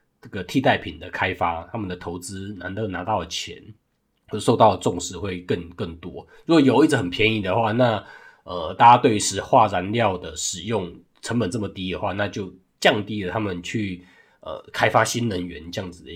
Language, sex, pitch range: Chinese, male, 95-125 Hz